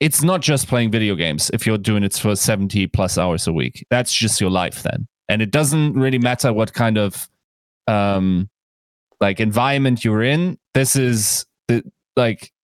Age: 30-49